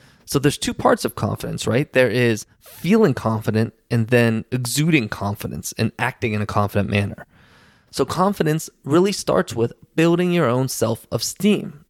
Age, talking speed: 20-39, 150 wpm